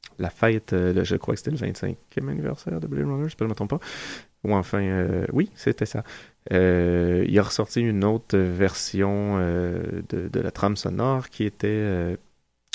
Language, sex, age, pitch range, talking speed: French, male, 30-49, 95-110 Hz, 190 wpm